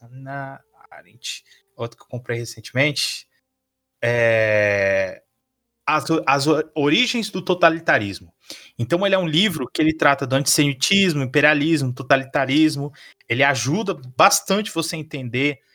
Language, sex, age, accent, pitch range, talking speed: Portuguese, male, 20-39, Brazilian, 115-150 Hz, 120 wpm